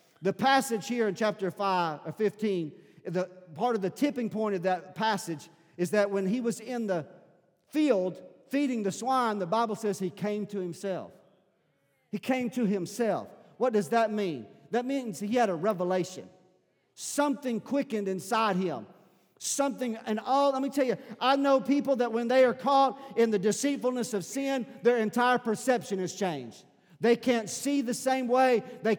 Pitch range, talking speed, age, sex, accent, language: 200-260 Hz, 175 wpm, 50-69, male, American, English